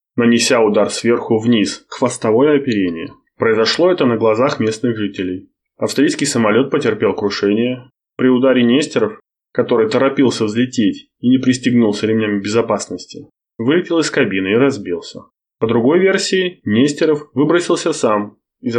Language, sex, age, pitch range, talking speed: Russian, male, 20-39, 105-140 Hz, 125 wpm